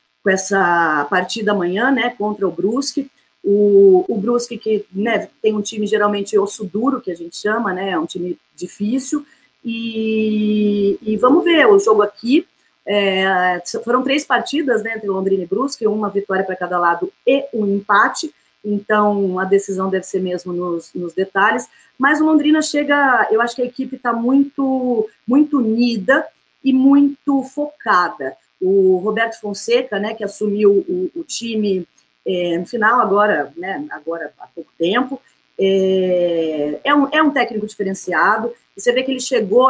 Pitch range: 195-260 Hz